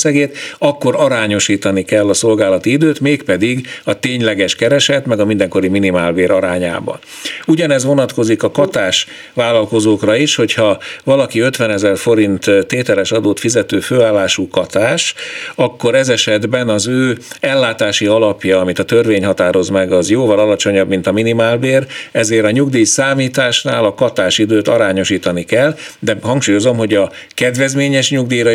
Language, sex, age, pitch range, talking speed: Hungarian, male, 50-69, 100-130 Hz, 130 wpm